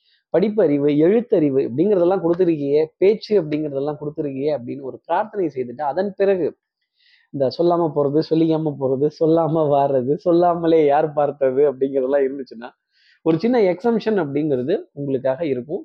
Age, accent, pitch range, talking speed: 20-39, native, 150-205 Hz, 115 wpm